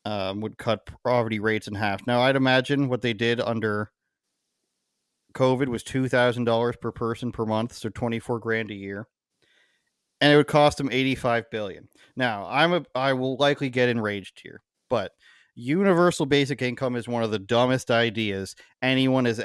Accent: American